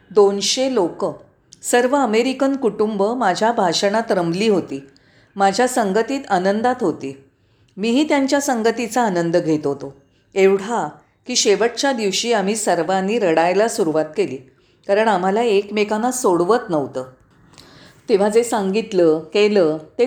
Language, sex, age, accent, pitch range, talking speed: Marathi, female, 40-59, native, 190-245 Hz, 115 wpm